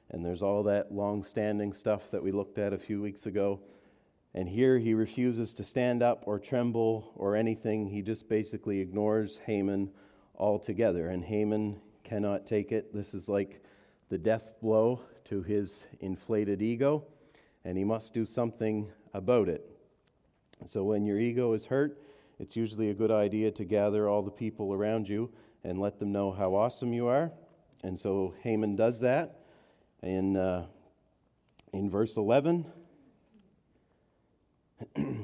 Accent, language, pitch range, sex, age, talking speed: American, English, 100-115 Hz, male, 40-59, 150 wpm